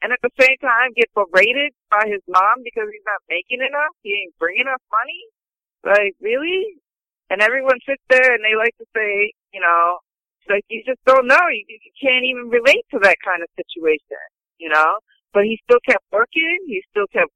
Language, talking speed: English, 200 wpm